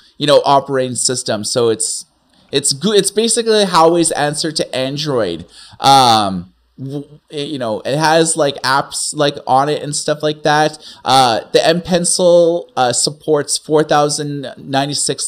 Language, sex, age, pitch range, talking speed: English, male, 30-49, 135-175 Hz, 140 wpm